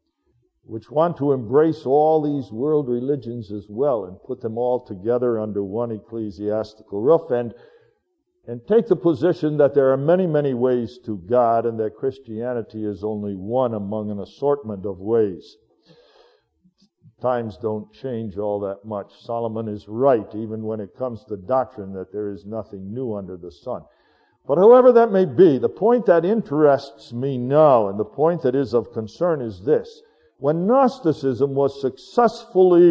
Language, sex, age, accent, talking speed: English, male, 60-79, American, 165 wpm